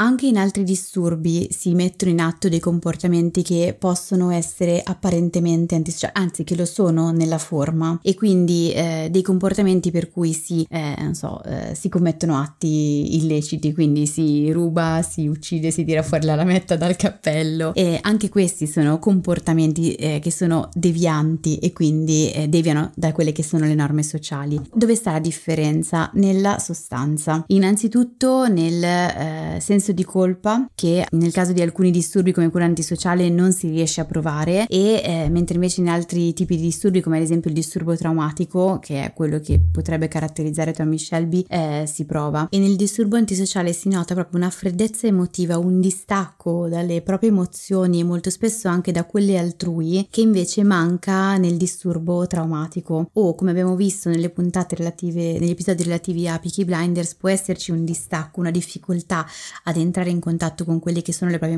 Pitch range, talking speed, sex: 160-185 Hz, 175 wpm, female